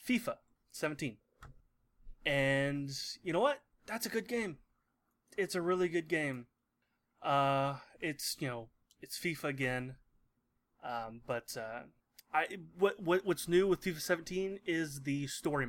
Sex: male